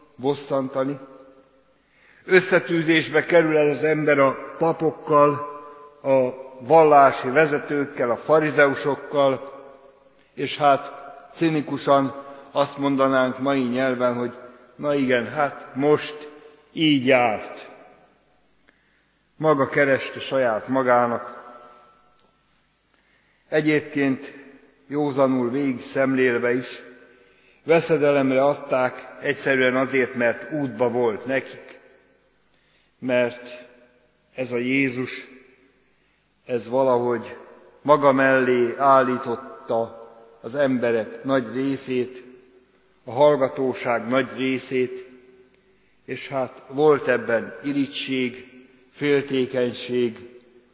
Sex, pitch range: male, 125-140 Hz